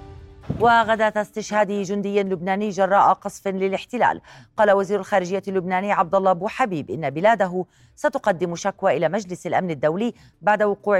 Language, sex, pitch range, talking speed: Arabic, female, 180-220 Hz, 135 wpm